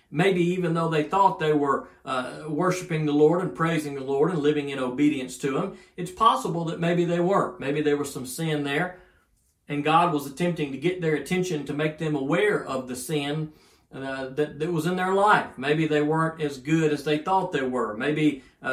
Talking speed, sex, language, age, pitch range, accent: 215 wpm, male, English, 40-59, 145-185 Hz, American